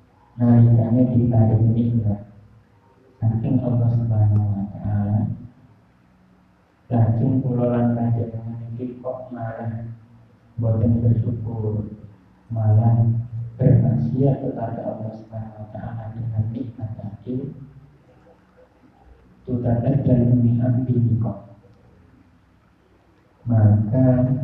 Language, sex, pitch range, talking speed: Indonesian, male, 105-125 Hz, 85 wpm